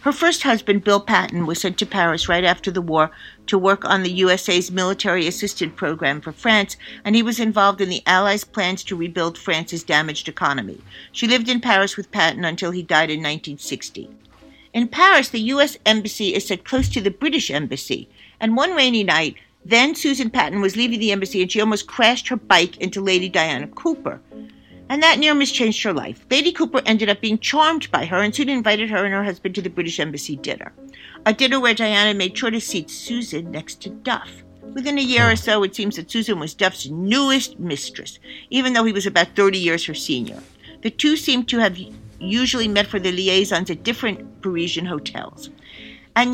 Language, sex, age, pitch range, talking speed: English, female, 50-69, 185-245 Hz, 200 wpm